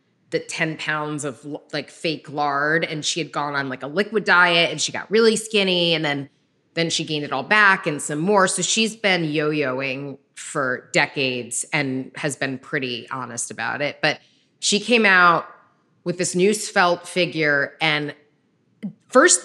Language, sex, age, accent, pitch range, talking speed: English, female, 20-39, American, 145-200 Hz, 175 wpm